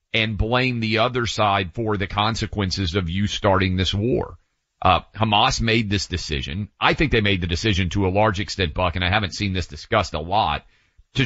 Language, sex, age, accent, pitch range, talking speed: English, male, 40-59, American, 95-115 Hz, 205 wpm